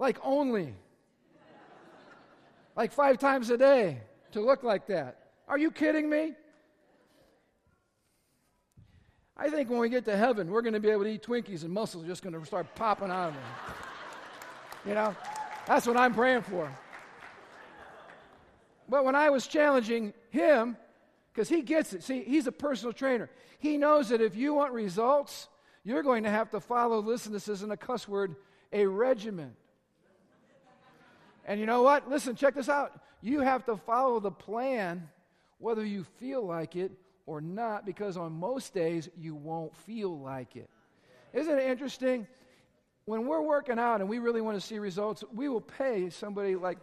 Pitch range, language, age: 185-260 Hz, English, 50-69